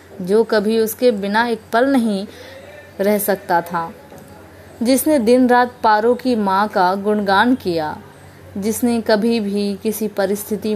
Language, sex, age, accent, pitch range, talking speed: Hindi, female, 20-39, native, 190-235 Hz, 135 wpm